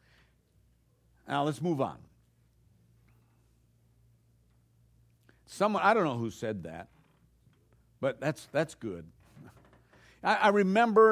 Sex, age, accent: male, 60-79, American